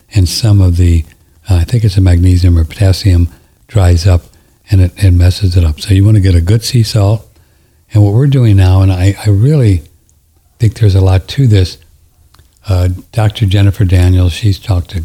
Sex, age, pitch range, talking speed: male, 60-79, 85-105 Hz, 205 wpm